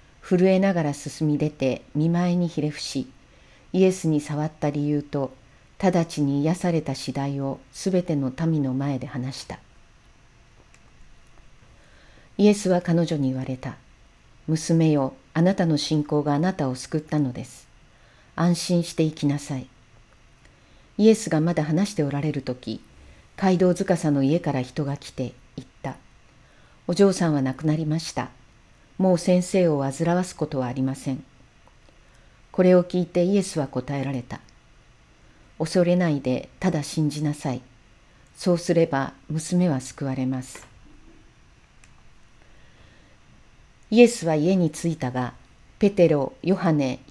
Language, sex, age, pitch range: Japanese, female, 40-59, 135-175 Hz